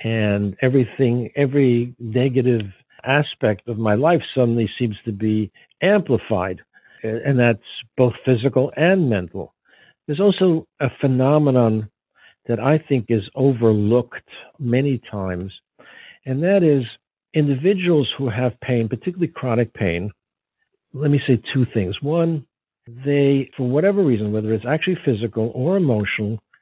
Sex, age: male, 60-79